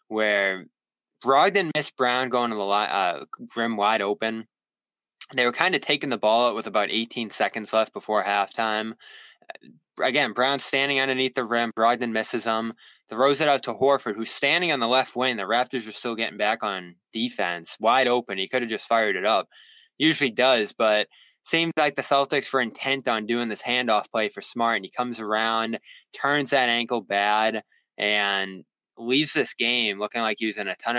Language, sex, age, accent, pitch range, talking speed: English, male, 20-39, American, 105-135 Hz, 190 wpm